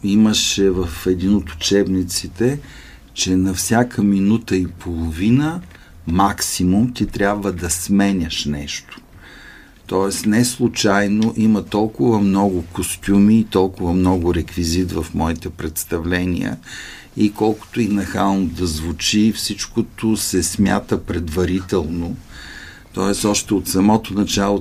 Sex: male